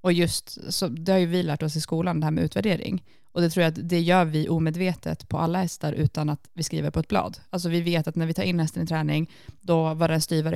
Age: 20-39